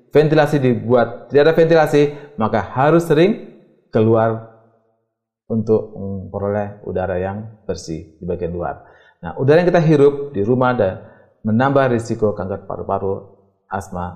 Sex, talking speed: male, 125 wpm